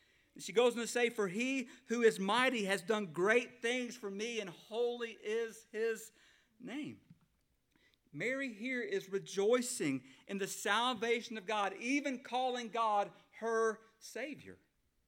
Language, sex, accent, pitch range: English, male, American, 195-245 Hz